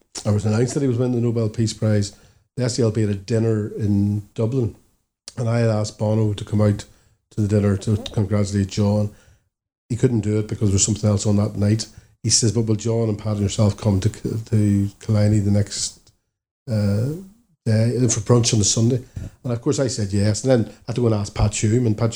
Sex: male